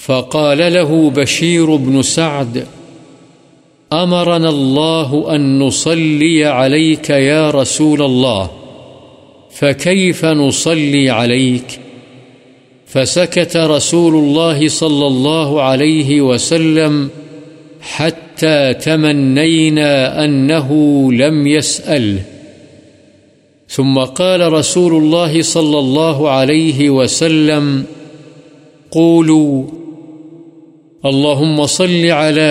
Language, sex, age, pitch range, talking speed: Urdu, male, 50-69, 130-155 Hz, 75 wpm